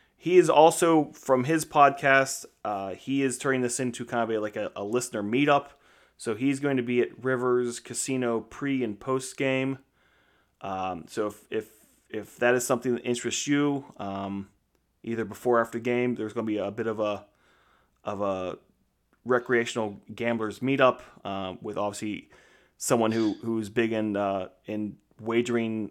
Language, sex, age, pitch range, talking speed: English, male, 30-49, 105-130 Hz, 170 wpm